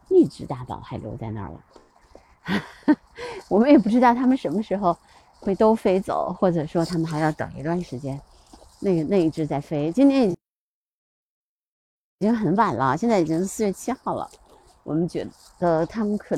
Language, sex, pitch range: Chinese, female, 160-220 Hz